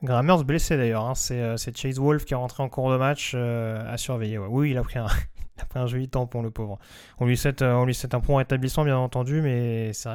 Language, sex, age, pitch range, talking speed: French, male, 20-39, 125-150 Hz, 240 wpm